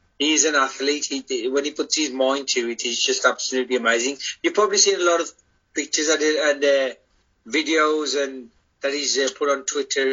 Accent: British